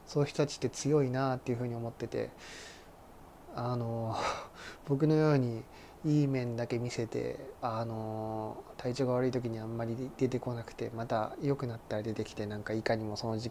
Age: 20-39